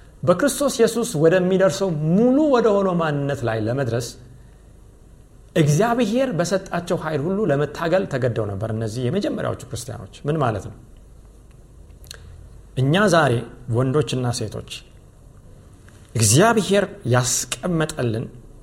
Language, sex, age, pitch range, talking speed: Amharic, male, 50-69, 120-200 Hz, 95 wpm